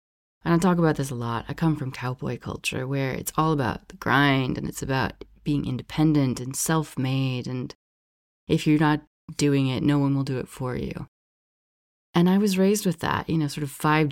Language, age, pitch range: English, 30-49, 130-160 Hz